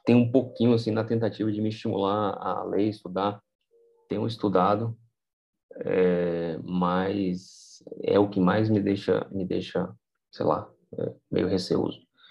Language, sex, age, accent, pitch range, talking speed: Portuguese, male, 20-39, Brazilian, 95-115 Hz, 140 wpm